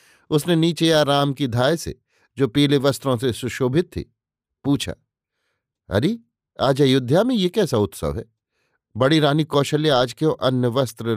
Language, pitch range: Hindi, 120-155 Hz